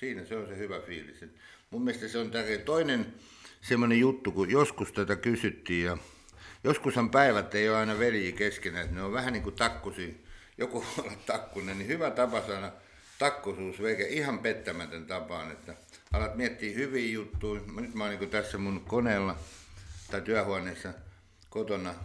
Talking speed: 165 wpm